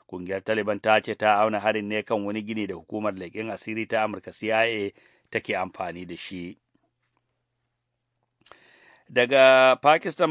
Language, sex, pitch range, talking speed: English, male, 105-115 Hz, 170 wpm